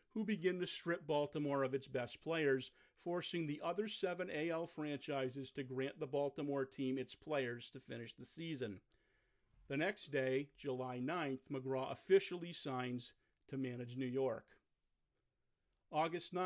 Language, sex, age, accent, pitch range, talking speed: English, male, 40-59, American, 130-180 Hz, 140 wpm